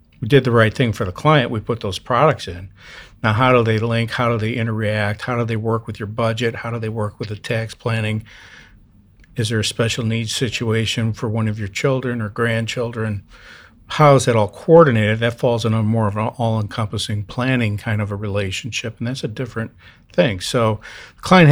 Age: 50-69